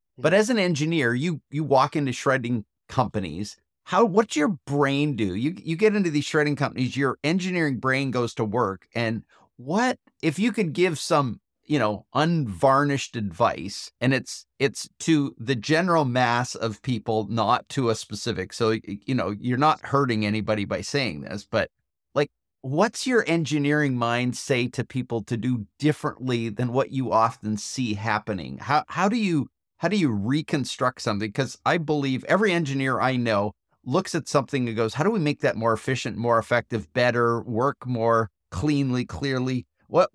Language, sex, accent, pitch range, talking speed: English, male, American, 115-150 Hz, 175 wpm